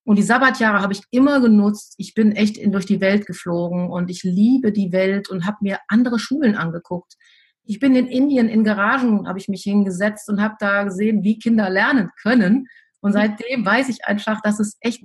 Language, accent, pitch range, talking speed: German, German, 195-235 Hz, 205 wpm